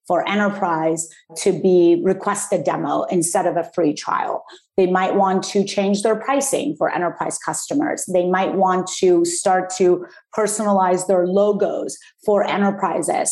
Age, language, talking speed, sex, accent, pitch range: 30-49, English, 150 wpm, female, American, 180-205 Hz